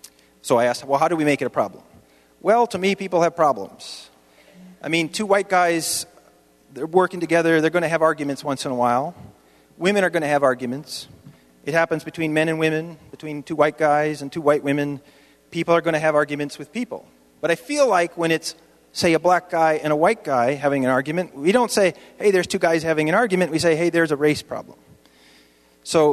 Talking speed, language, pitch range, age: 215 wpm, English, 130-175 Hz, 40-59